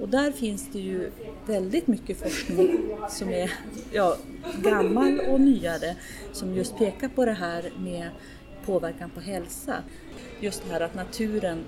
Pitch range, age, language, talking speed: 170-225 Hz, 30-49, Swedish, 140 wpm